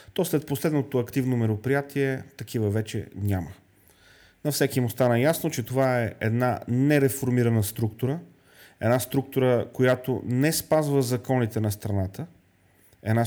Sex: male